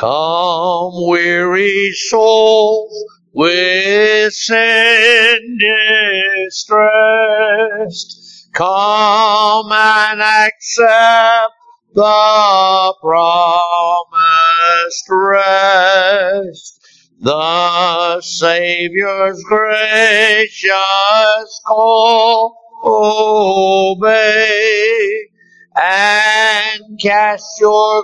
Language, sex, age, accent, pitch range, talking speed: English, male, 50-69, American, 185-220 Hz, 45 wpm